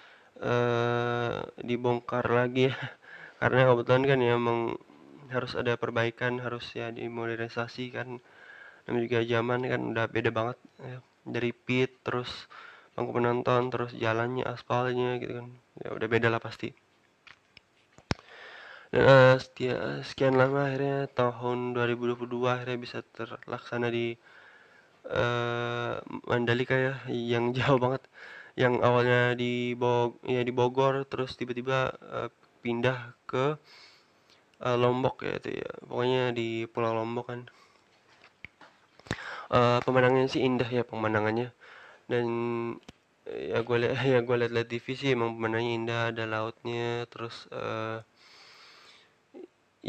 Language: Indonesian